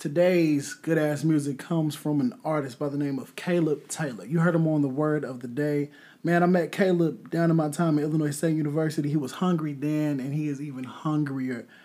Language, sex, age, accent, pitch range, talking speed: English, male, 20-39, American, 130-165 Hz, 220 wpm